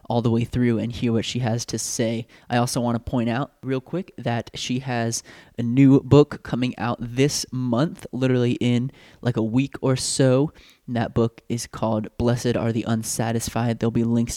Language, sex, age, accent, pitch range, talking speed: English, male, 20-39, American, 115-135 Hz, 195 wpm